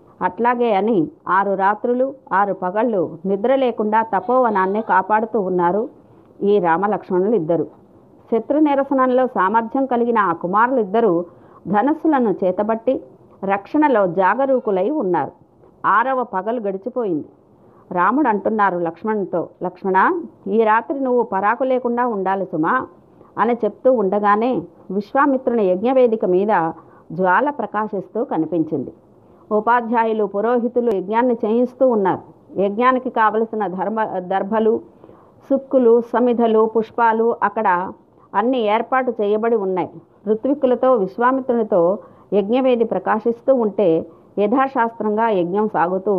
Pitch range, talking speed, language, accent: 190-245 Hz, 95 wpm, Telugu, native